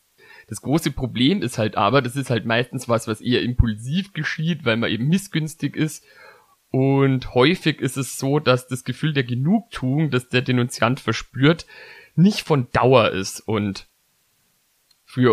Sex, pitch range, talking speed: male, 115-135 Hz, 155 wpm